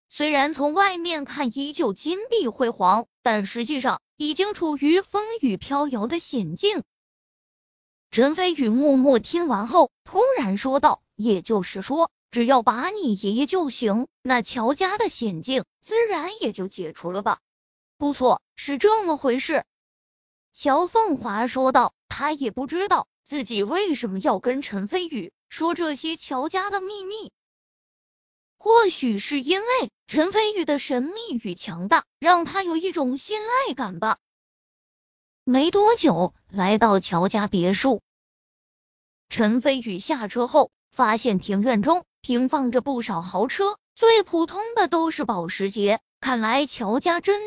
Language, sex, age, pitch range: Chinese, female, 20-39, 230-340 Hz